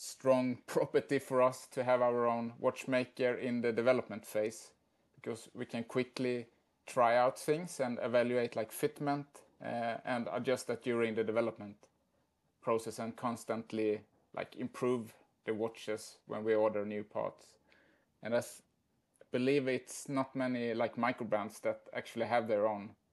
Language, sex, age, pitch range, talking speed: English, male, 30-49, 110-125 Hz, 150 wpm